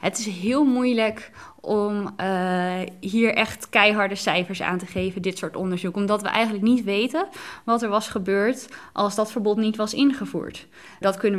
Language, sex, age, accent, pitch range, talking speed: Dutch, female, 20-39, Dutch, 185-230 Hz, 175 wpm